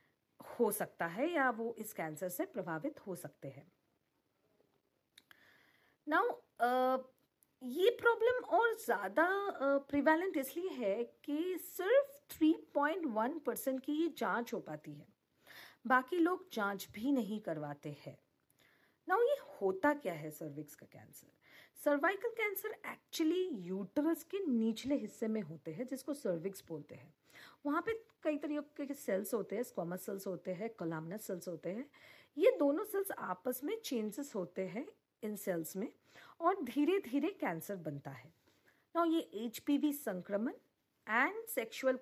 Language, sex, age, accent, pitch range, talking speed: Hindi, female, 50-69, native, 190-315 Hz, 140 wpm